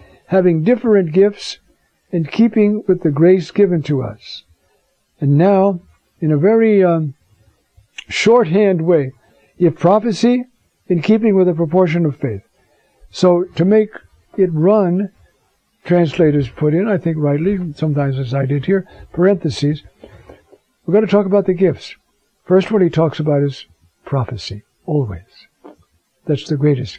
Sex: male